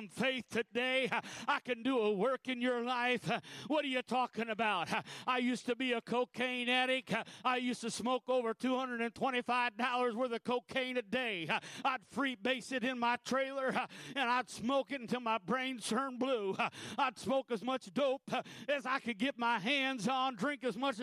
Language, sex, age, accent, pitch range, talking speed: English, male, 50-69, American, 240-270 Hz, 180 wpm